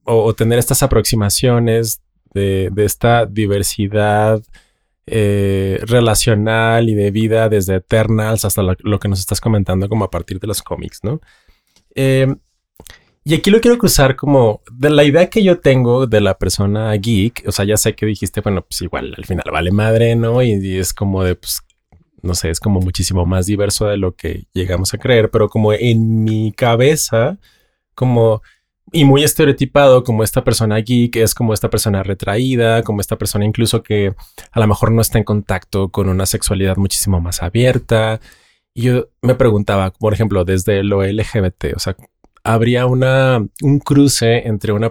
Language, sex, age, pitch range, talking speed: Spanish, male, 20-39, 100-115 Hz, 180 wpm